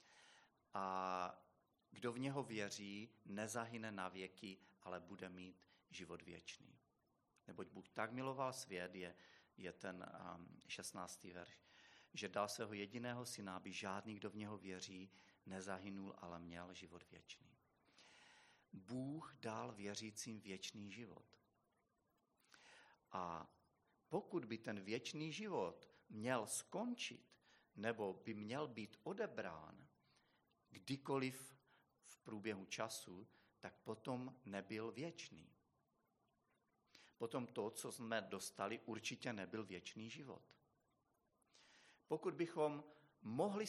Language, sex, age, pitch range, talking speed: Czech, male, 40-59, 95-130 Hz, 105 wpm